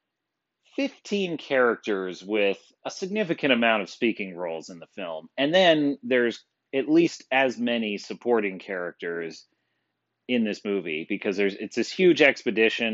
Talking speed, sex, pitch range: 140 wpm, male, 100-135 Hz